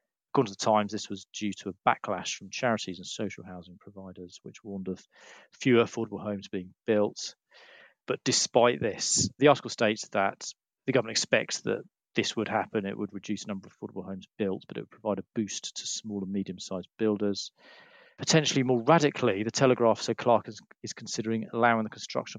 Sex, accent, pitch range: male, British, 100-120 Hz